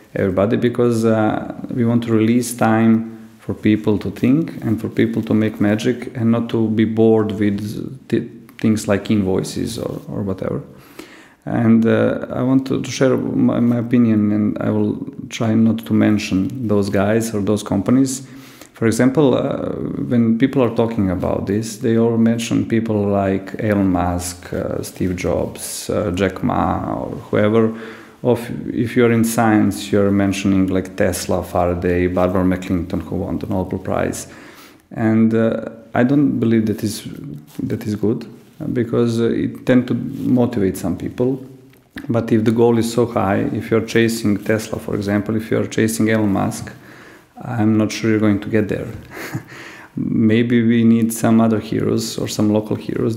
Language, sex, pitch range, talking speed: English, male, 105-115 Hz, 165 wpm